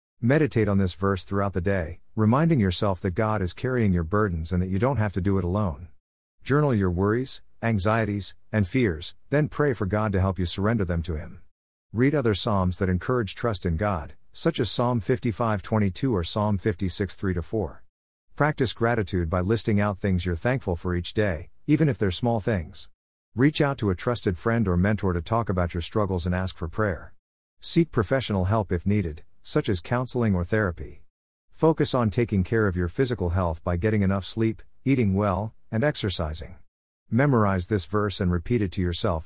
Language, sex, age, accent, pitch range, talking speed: English, male, 50-69, American, 90-115 Hz, 190 wpm